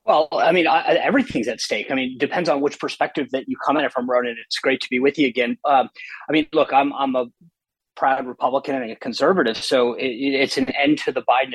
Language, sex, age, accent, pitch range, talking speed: English, male, 30-49, American, 125-145 Hz, 245 wpm